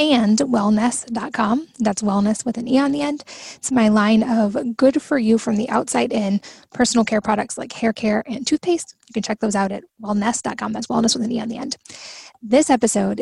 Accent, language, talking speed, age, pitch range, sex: American, English, 210 wpm, 10-29, 220-255 Hz, female